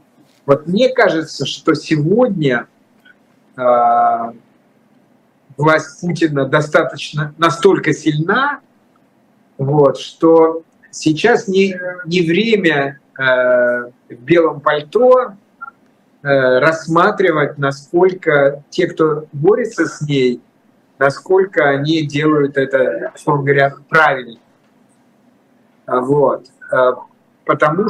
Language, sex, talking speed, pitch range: Russian, male, 80 wpm, 140-185 Hz